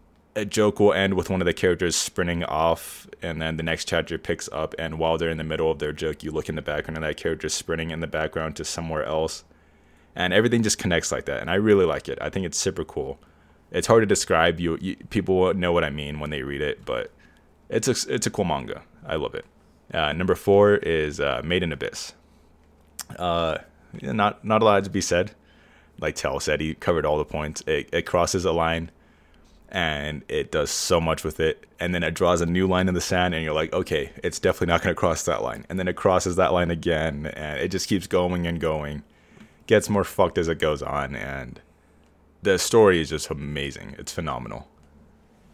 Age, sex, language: 20-39, male, English